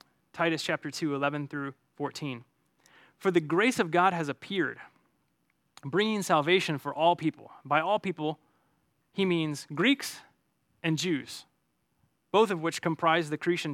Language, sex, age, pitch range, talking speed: English, male, 20-39, 150-185 Hz, 140 wpm